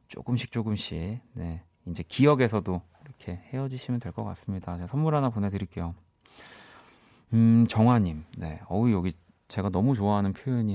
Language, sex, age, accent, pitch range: Korean, male, 30-49, native, 90-125 Hz